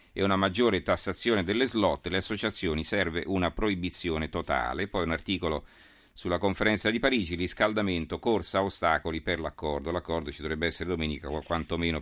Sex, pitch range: male, 85-110 Hz